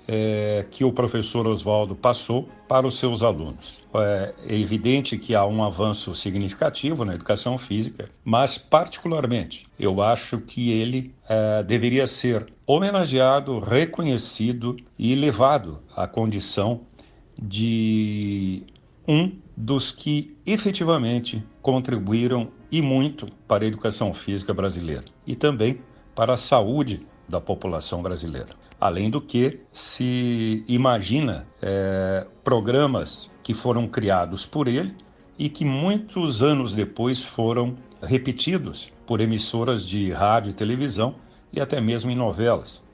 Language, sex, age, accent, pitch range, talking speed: Portuguese, male, 60-79, Brazilian, 105-130 Hz, 115 wpm